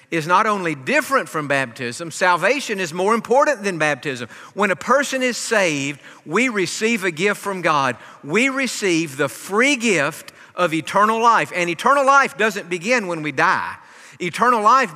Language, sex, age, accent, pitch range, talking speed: English, male, 50-69, American, 165-225 Hz, 165 wpm